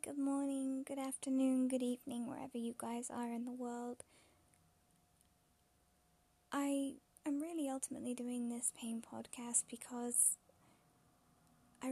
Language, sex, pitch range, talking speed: English, female, 240-265 Hz, 115 wpm